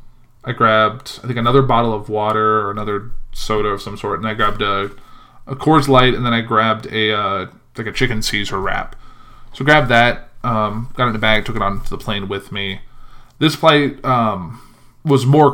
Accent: American